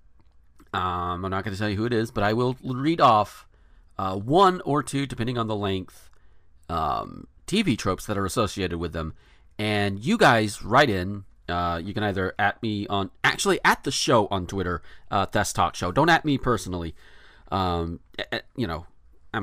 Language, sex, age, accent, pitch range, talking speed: English, male, 40-59, American, 90-125 Hz, 190 wpm